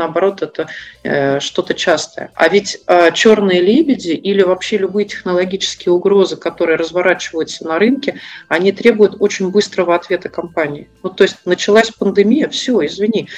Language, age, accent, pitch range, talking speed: Russian, 40-59, native, 175-225 Hz, 145 wpm